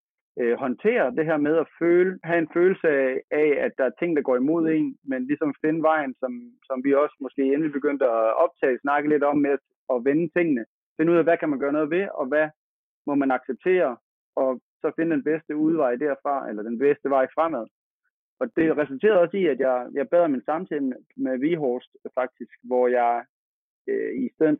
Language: Danish